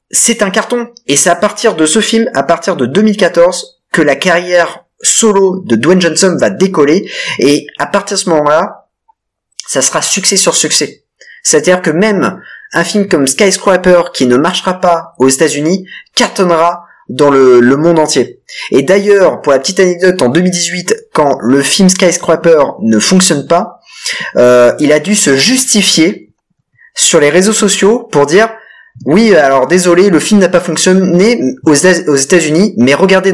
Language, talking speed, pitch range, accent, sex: French, 170 wpm, 155-205 Hz, French, male